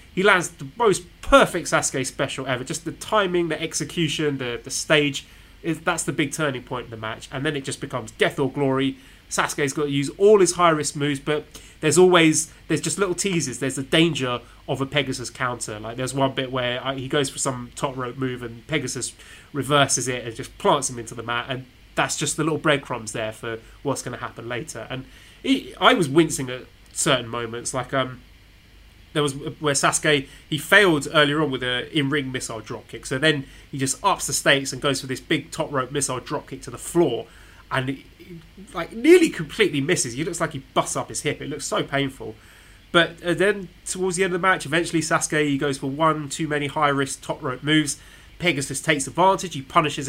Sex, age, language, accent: male, 20-39, English, British